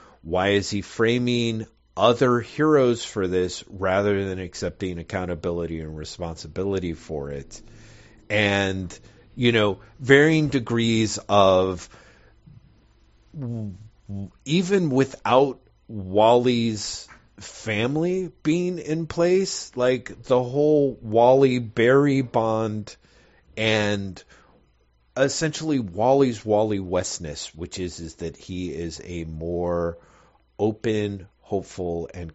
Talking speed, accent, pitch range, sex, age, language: 90 wpm, American, 90-125 Hz, male, 30-49, English